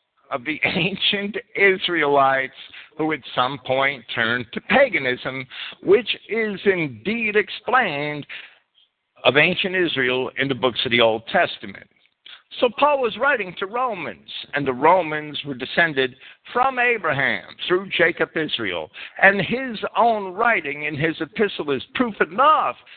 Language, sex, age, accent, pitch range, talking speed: English, male, 60-79, American, 145-225 Hz, 135 wpm